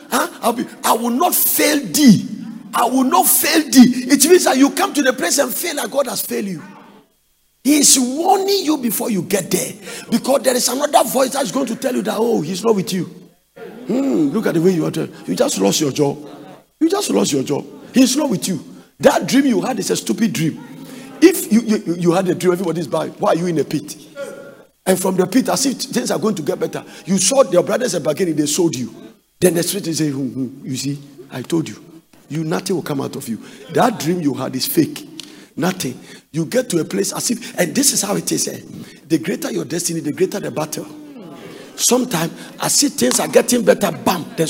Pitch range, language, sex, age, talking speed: 170-260 Hz, English, male, 50-69, 235 wpm